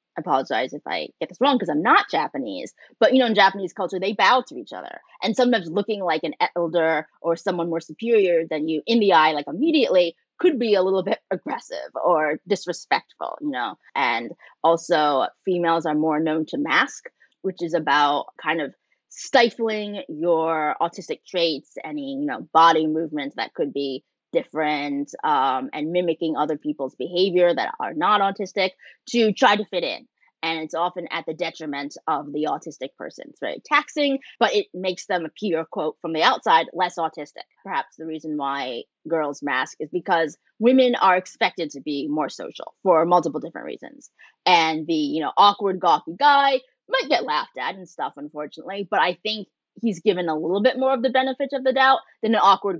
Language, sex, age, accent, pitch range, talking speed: English, female, 20-39, American, 160-230 Hz, 190 wpm